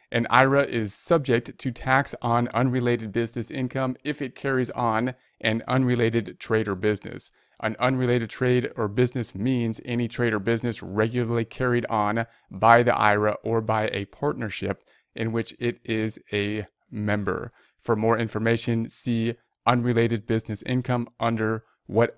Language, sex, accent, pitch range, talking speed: English, male, American, 110-125 Hz, 145 wpm